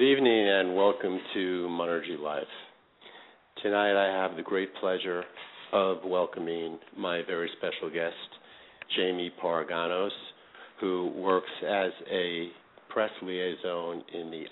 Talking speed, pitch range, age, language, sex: 120 wpm, 85-110 Hz, 50-69, English, male